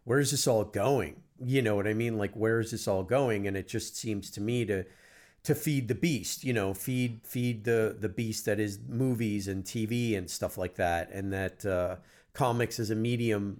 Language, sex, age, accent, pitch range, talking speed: English, male, 40-59, American, 100-120 Hz, 220 wpm